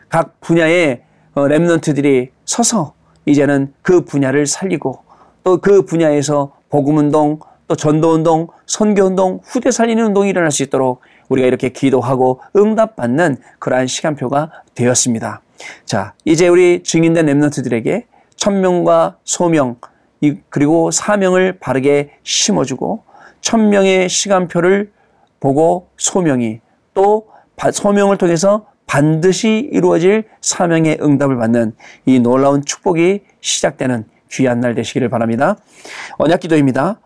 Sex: male